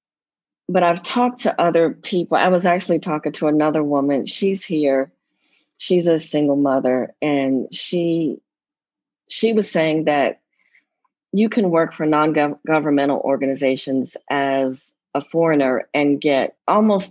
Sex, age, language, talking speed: female, 40-59, English, 130 wpm